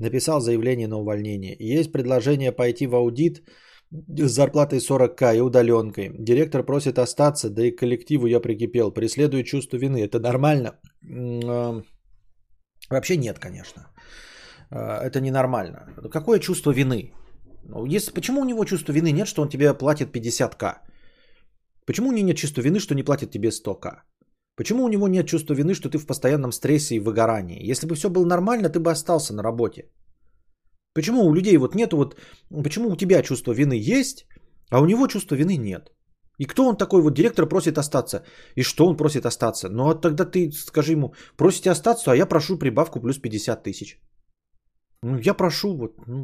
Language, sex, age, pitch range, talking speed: Bulgarian, male, 20-39, 120-165 Hz, 175 wpm